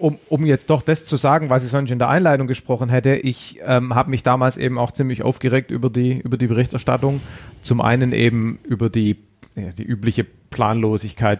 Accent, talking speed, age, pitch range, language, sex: German, 190 wpm, 40-59, 110-130 Hz, German, male